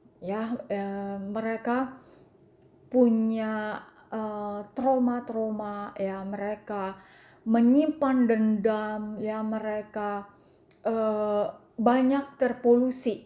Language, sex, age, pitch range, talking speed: English, female, 20-39, 200-240 Hz, 70 wpm